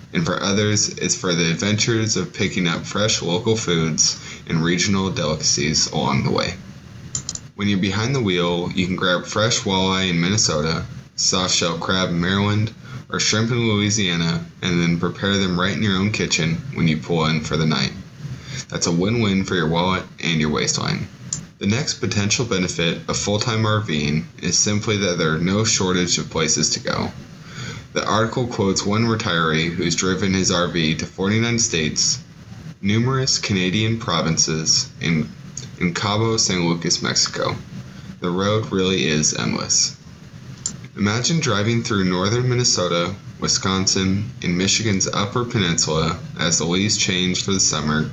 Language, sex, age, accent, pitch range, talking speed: English, male, 20-39, American, 85-105 Hz, 155 wpm